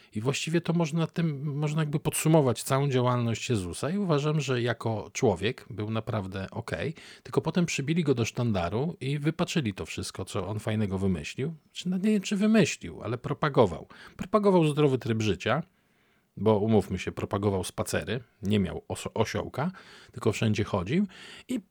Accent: native